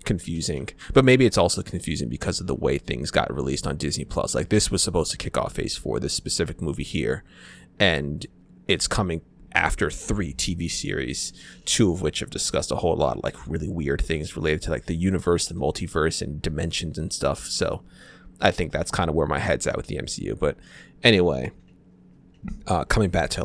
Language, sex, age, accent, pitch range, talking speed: English, male, 20-39, American, 80-95 Hz, 200 wpm